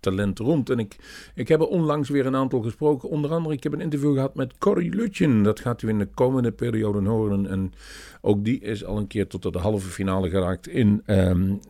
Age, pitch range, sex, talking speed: 50-69, 100-150 Hz, male, 225 wpm